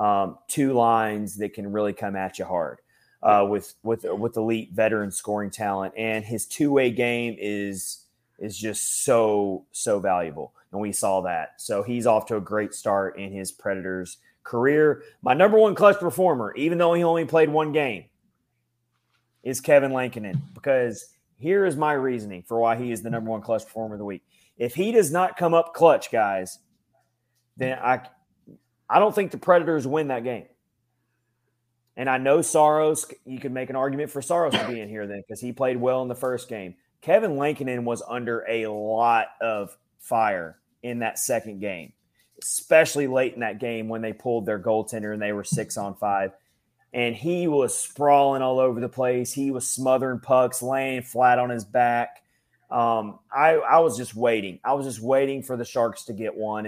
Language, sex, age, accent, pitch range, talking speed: English, male, 30-49, American, 105-135 Hz, 190 wpm